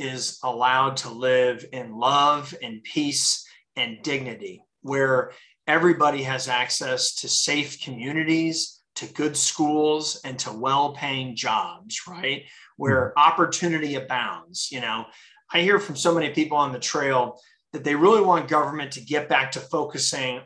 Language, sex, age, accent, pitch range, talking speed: English, male, 30-49, American, 135-165 Hz, 145 wpm